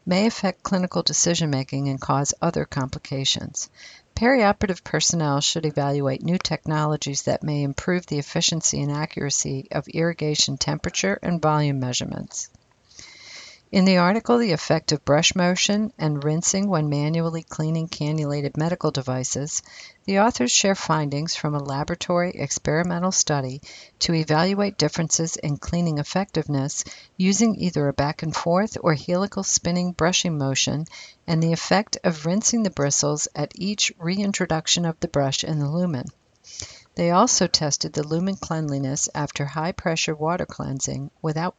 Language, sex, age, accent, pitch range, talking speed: English, female, 50-69, American, 145-185 Hz, 135 wpm